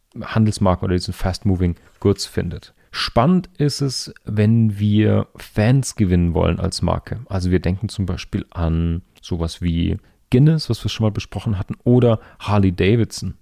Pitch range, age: 95-110 Hz, 40-59